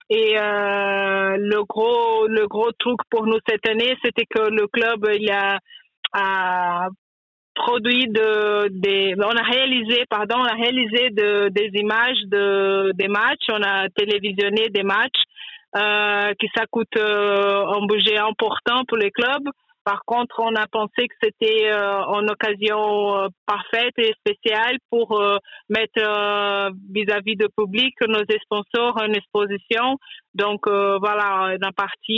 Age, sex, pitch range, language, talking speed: 30-49, female, 200-230 Hz, French, 145 wpm